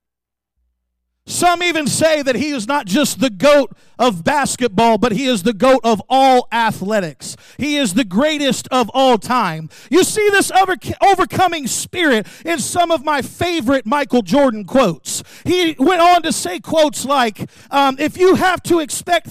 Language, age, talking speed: English, 40-59, 160 wpm